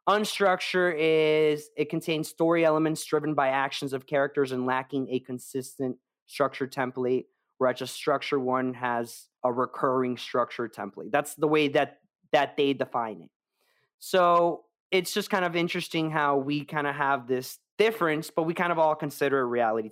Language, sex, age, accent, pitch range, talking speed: English, male, 20-39, American, 130-170 Hz, 165 wpm